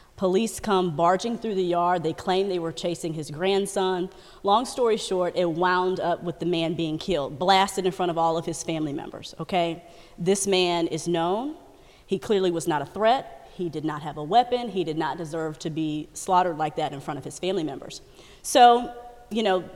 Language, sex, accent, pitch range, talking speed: English, female, American, 170-195 Hz, 205 wpm